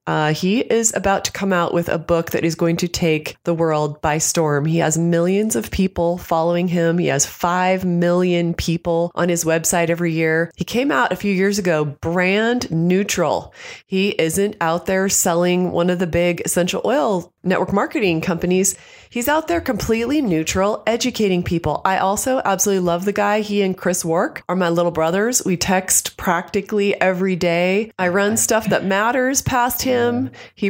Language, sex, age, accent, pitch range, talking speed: English, female, 30-49, American, 165-200 Hz, 180 wpm